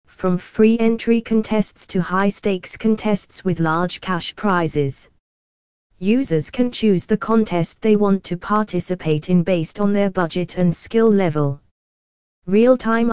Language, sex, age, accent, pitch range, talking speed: English, female, 20-39, British, 170-215 Hz, 135 wpm